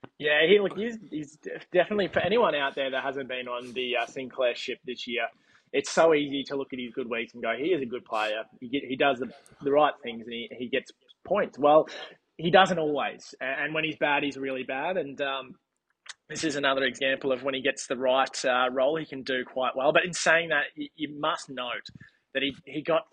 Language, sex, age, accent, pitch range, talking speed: English, male, 20-39, Australian, 125-155 Hz, 235 wpm